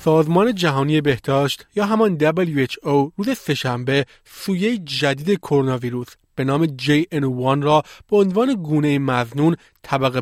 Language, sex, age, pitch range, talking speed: Persian, male, 30-49, 140-195 Hz, 125 wpm